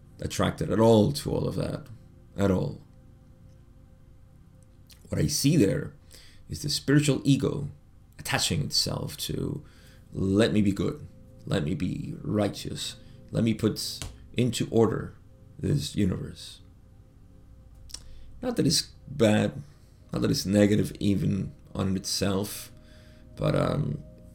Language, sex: English, male